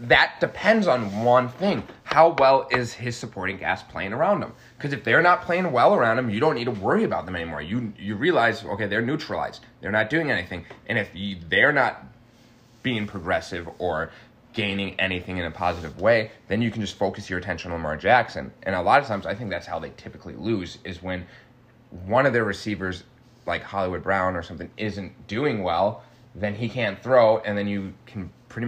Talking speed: 205 wpm